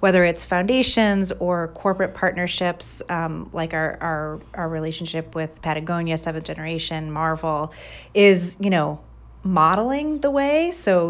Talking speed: 130 wpm